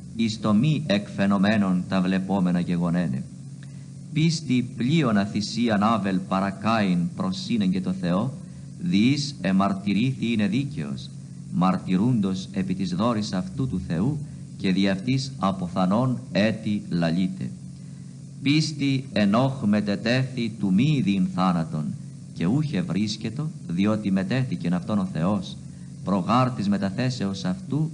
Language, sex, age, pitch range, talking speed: Greek, male, 50-69, 95-155 Hz, 105 wpm